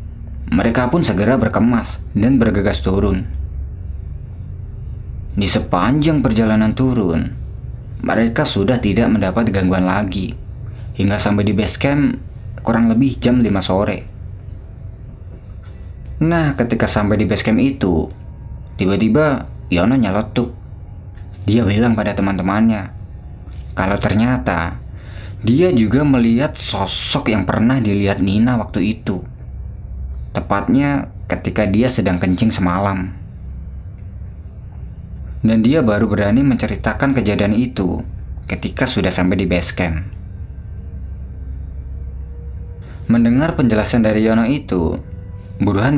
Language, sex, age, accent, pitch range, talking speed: Indonesian, male, 20-39, native, 90-115 Hz, 100 wpm